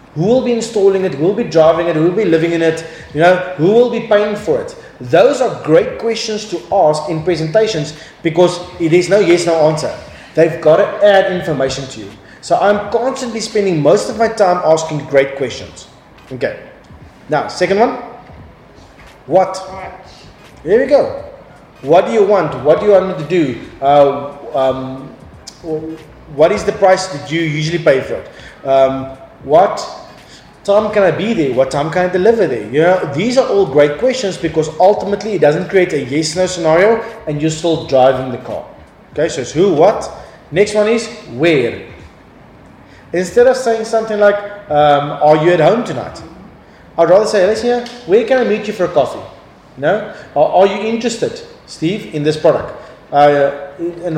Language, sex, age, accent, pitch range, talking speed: English, male, 30-49, South African, 155-210 Hz, 185 wpm